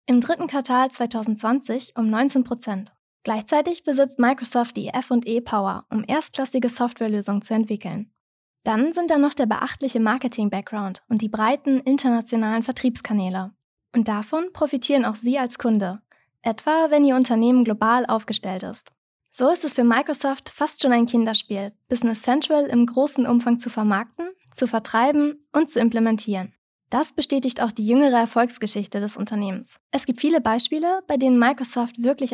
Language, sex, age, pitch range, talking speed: German, female, 20-39, 220-275 Hz, 145 wpm